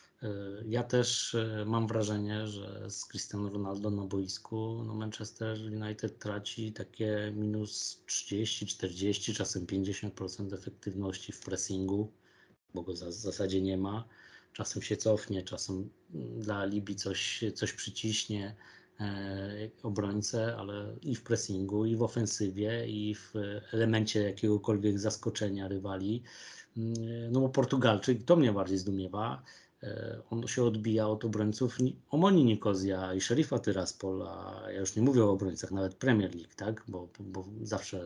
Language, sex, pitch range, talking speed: Polish, male, 95-115 Hz, 130 wpm